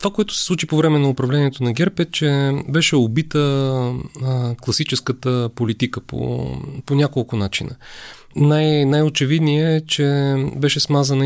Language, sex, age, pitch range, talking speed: Bulgarian, male, 30-49, 125-155 Hz, 140 wpm